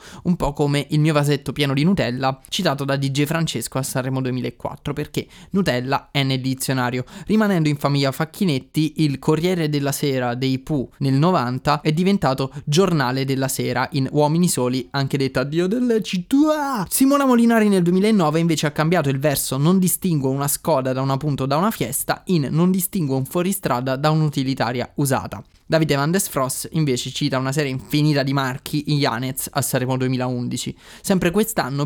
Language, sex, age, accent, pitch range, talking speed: Italian, male, 20-39, native, 135-170 Hz, 170 wpm